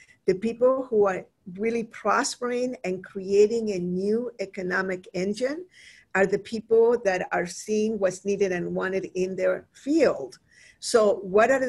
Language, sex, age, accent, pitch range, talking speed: English, female, 50-69, American, 195-235 Hz, 145 wpm